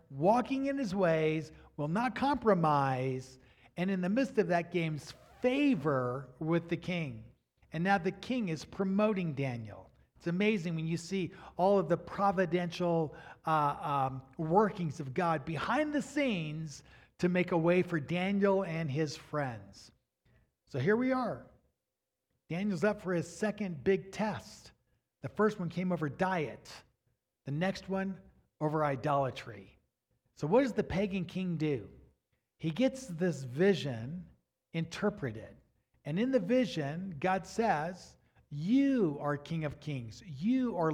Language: English